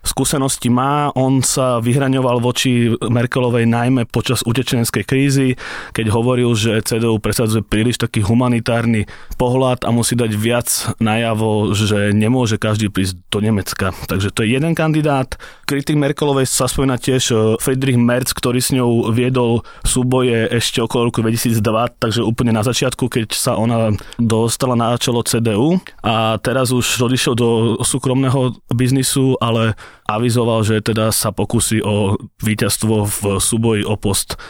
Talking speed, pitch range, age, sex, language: 145 wpm, 115-130 Hz, 20-39, male, Slovak